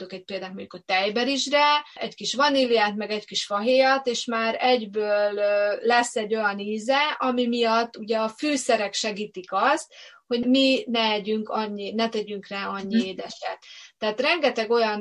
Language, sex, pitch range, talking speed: Hungarian, female, 205-240 Hz, 150 wpm